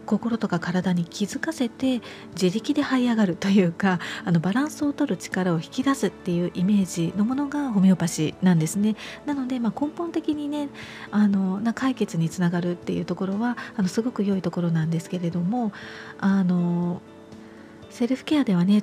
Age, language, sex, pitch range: 40-59, Japanese, female, 180-235 Hz